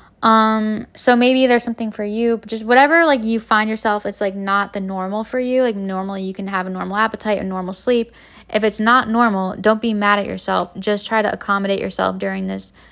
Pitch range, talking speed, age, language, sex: 200-225 Hz, 225 wpm, 10-29, English, female